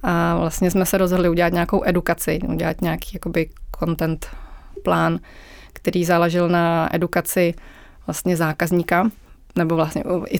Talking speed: 125 wpm